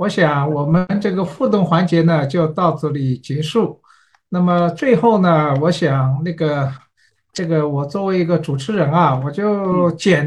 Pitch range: 155-220 Hz